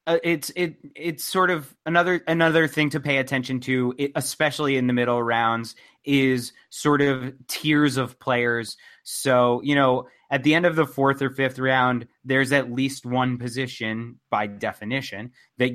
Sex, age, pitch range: male, 30-49, 120-145 Hz